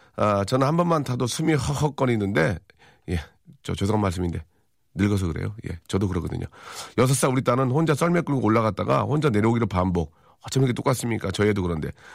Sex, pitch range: male, 100-140 Hz